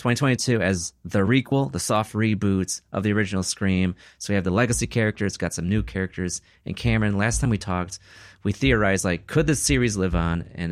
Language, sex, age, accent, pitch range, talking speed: English, male, 30-49, American, 90-120 Hz, 200 wpm